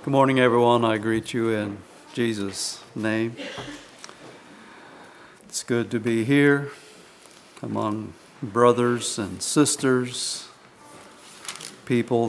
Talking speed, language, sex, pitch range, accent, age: 95 wpm, English, male, 120-140 Hz, American, 60-79